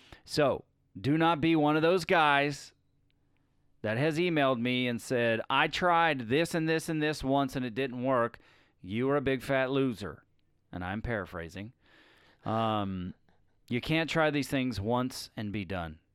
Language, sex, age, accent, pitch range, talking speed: English, male, 40-59, American, 100-130 Hz, 165 wpm